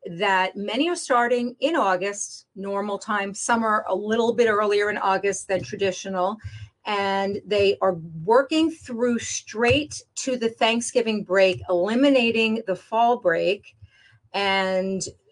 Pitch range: 185-230 Hz